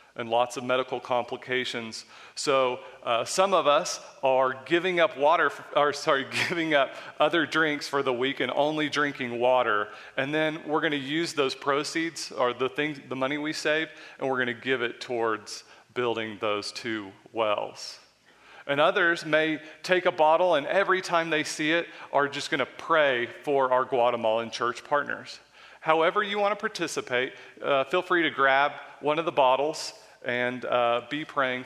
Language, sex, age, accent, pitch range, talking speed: English, male, 40-59, American, 125-150 Hz, 170 wpm